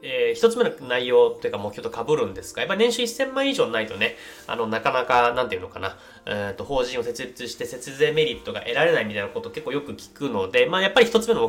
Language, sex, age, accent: Japanese, male, 20-39, native